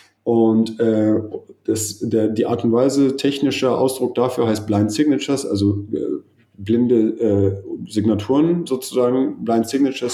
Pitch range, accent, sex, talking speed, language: 105-130 Hz, German, male, 130 wpm, German